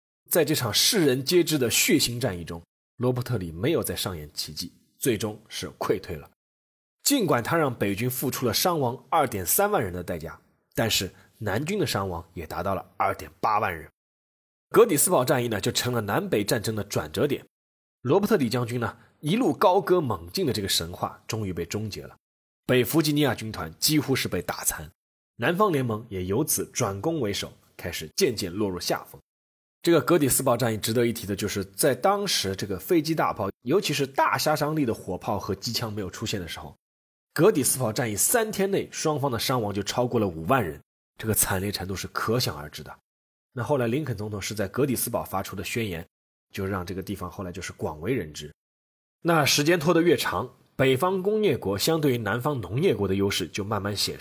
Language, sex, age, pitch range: Chinese, male, 20-39, 95-140 Hz